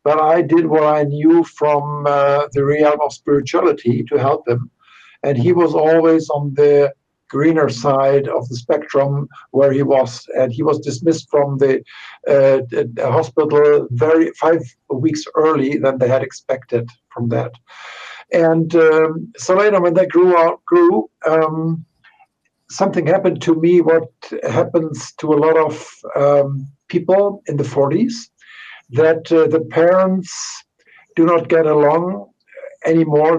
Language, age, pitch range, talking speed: English, 60-79, 145-170 Hz, 145 wpm